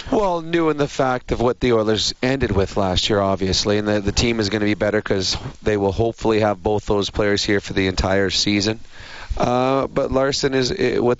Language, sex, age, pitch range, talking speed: English, male, 30-49, 105-120 Hz, 220 wpm